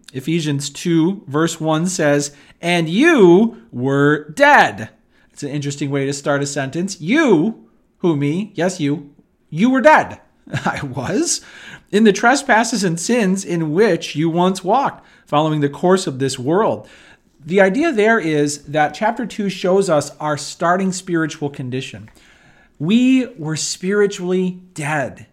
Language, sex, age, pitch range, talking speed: English, male, 40-59, 145-205 Hz, 140 wpm